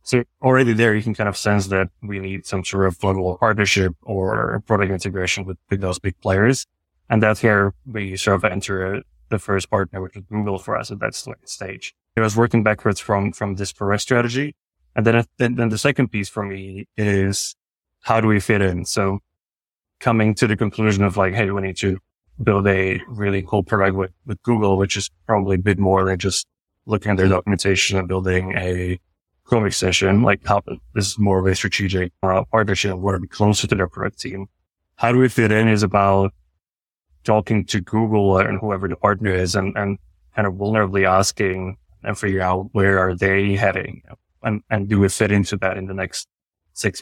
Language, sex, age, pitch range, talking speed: English, male, 20-39, 95-105 Hz, 200 wpm